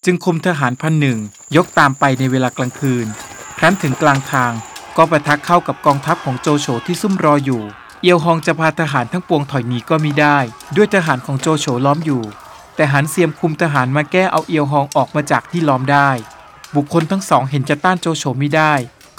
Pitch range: 135-170 Hz